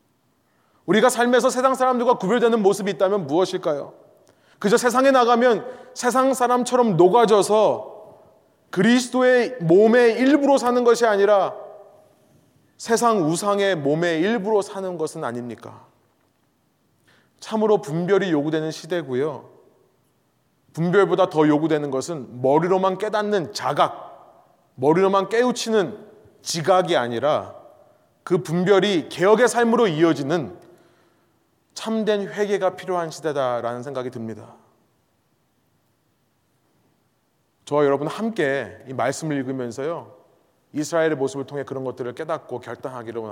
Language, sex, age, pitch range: Korean, male, 30-49, 150-225 Hz